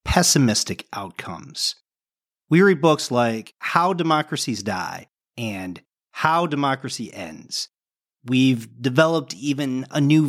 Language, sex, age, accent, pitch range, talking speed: English, male, 40-59, American, 115-150 Hz, 105 wpm